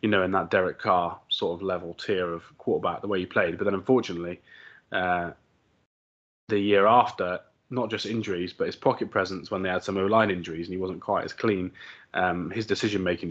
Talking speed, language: 205 wpm, English